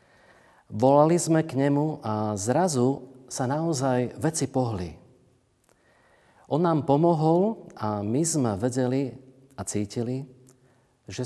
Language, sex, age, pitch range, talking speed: Slovak, male, 40-59, 100-130 Hz, 105 wpm